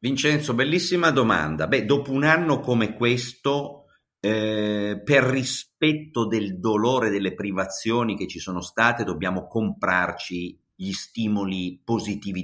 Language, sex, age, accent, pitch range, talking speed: Italian, male, 50-69, native, 90-135 Hz, 120 wpm